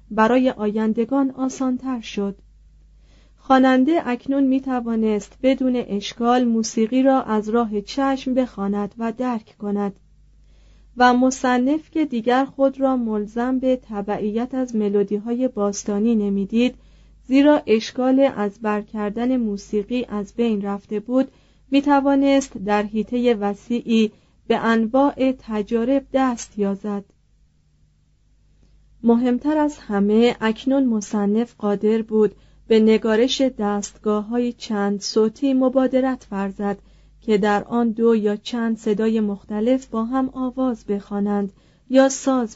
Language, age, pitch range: Persian, 30-49, 205-255 Hz